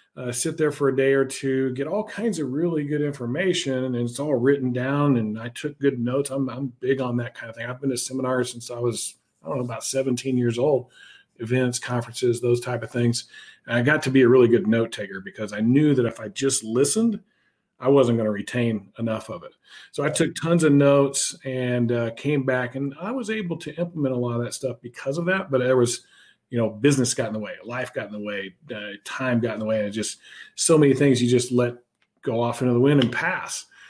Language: English